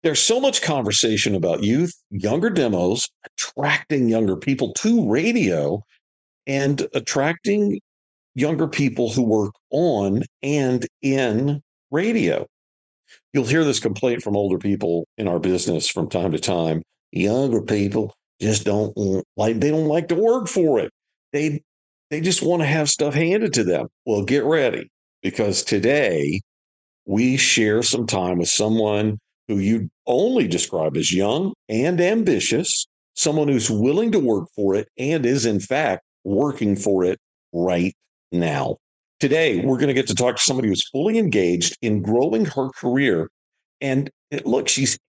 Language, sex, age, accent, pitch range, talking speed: English, male, 50-69, American, 100-145 Hz, 150 wpm